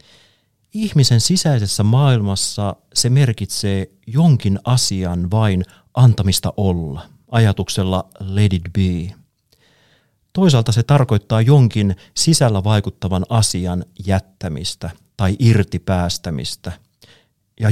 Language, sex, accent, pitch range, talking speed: Finnish, male, native, 95-125 Hz, 85 wpm